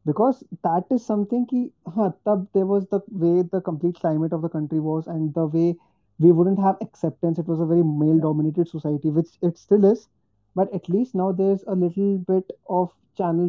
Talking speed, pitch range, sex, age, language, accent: 210 wpm, 155-185 Hz, male, 30-49, Hindi, native